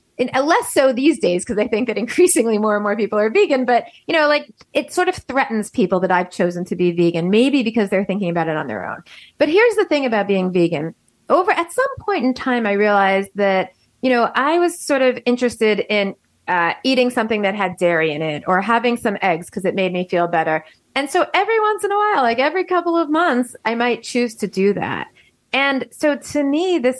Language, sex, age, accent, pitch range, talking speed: English, female, 30-49, American, 195-275 Hz, 235 wpm